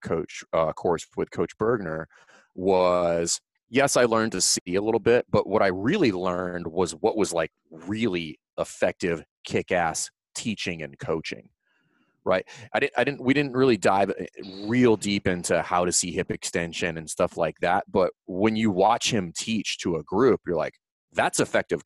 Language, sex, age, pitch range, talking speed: English, male, 30-49, 85-105 Hz, 175 wpm